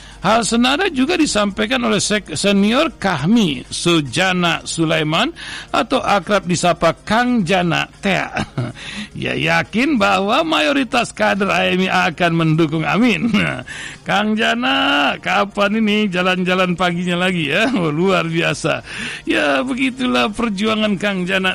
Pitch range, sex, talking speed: 165-205 Hz, male, 110 wpm